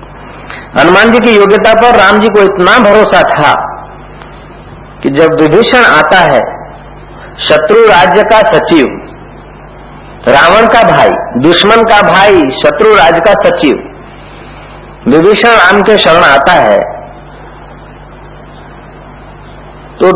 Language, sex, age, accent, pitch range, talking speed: Hindi, male, 50-69, native, 150-210 Hz, 110 wpm